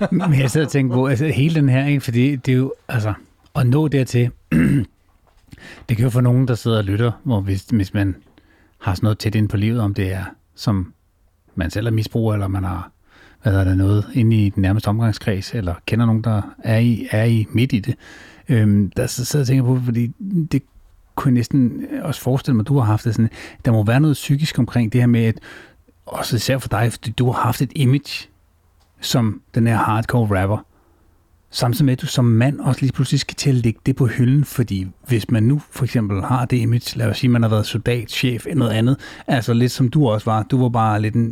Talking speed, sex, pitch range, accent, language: 230 wpm, male, 105-140 Hz, native, Danish